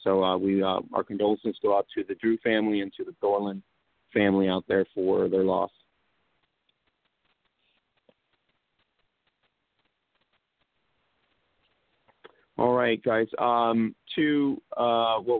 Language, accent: English, American